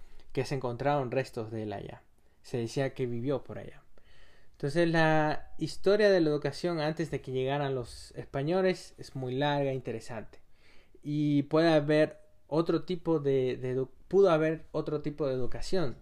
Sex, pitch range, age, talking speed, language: male, 115-155 Hz, 20-39, 160 wpm, Spanish